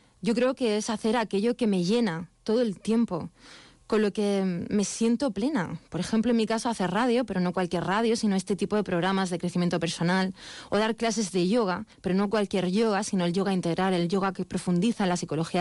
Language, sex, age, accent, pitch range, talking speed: Spanish, female, 30-49, Spanish, 180-220 Hz, 220 wpm